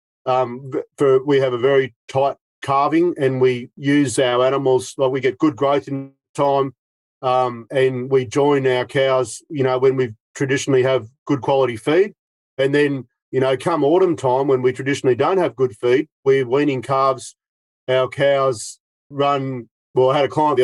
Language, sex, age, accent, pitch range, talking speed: English, male, 40-59, Australian, 130-145 Hz, 175 wpm